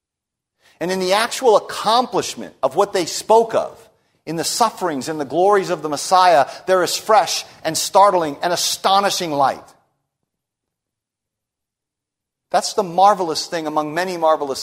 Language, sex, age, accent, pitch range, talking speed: English, male, 40-59, American, 150-195 Hz, 140 wpm